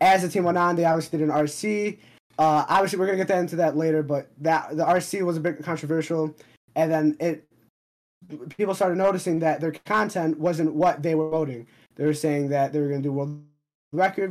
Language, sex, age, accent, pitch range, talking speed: English, male, 20-39, American, 135-165 Hz, 220 wpm